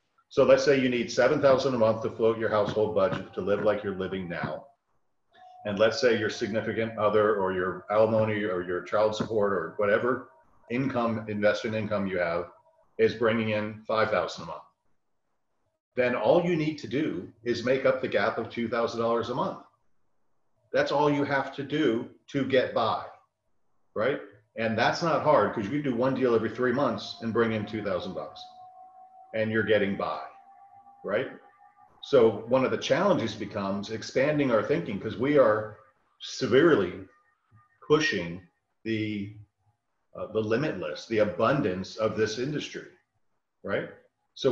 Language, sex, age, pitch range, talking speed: English, male, 40-59, 105-140 Hz, 160 wpm